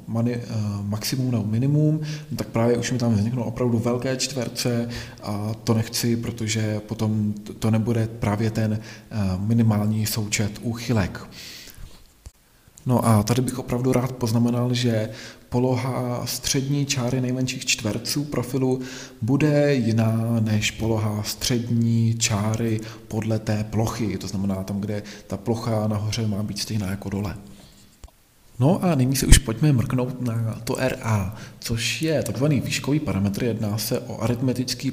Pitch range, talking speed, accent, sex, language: 110-125 Hz, 135 wpm, native, male, Czech